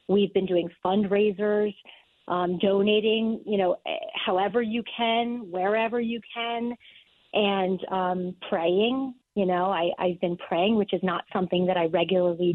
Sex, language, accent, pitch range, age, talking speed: female, English, American, 185-225 Hz, 30-49, 140 wpm